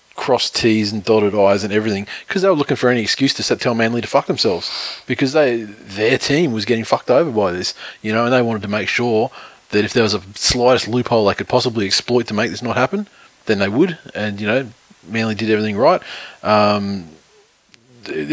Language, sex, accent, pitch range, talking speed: English, male, Australian, 105-125 Hz, 215 wpm